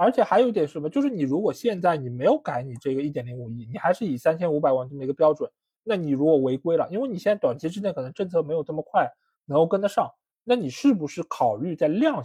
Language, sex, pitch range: Chinese, male, 140-240 Hz